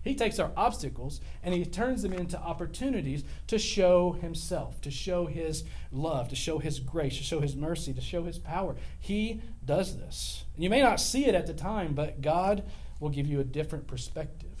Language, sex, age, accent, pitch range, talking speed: English, male, 40-59, American, 130-185 Hz, 195 wpm